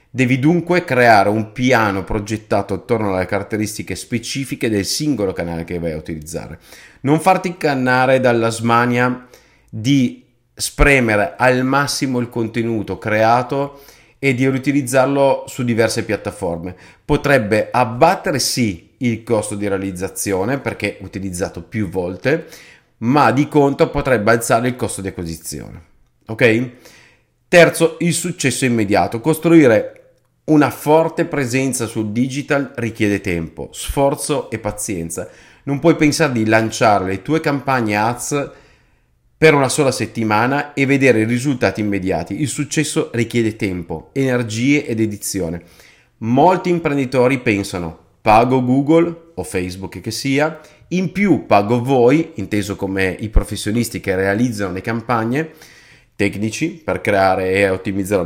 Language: Italian